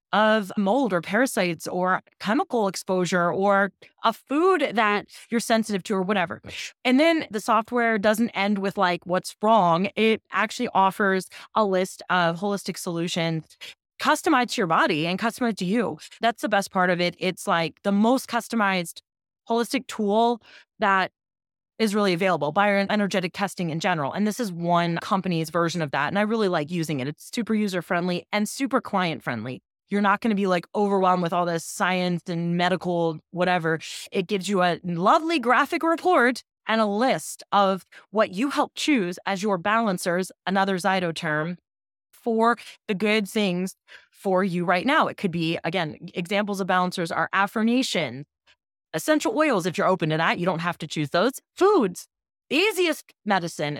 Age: 20-39